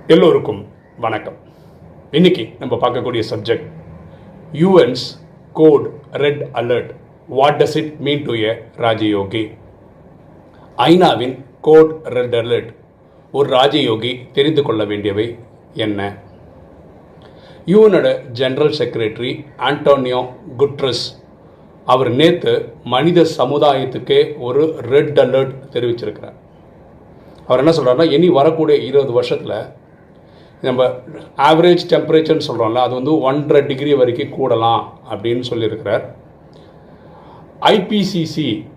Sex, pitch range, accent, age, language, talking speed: male, 125-165 Hz, native, 40-59, Tamil, 90 wpm